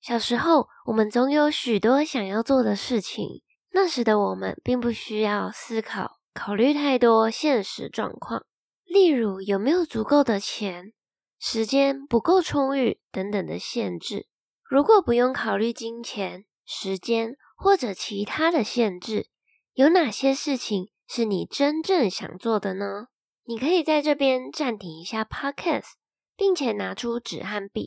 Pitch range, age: 210-280 Hz, 10-29